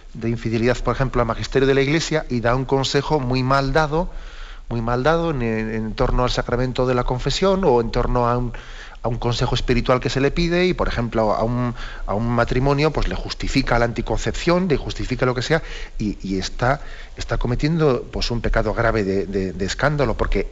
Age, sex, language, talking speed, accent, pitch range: 40-59, male, Spanish, 215 wpm, Spanish, 115-140 Hz